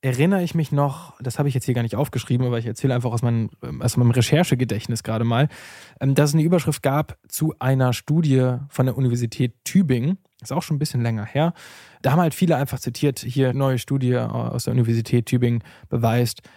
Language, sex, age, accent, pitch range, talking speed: German, male, 20-39, German, 125-150 Hz, 200 wpm